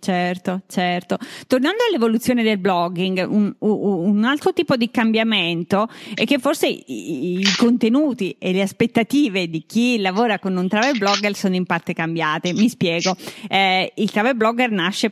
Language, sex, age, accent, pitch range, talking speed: Italian, female, 30-49, native, 185-230 Hz, 160 wpm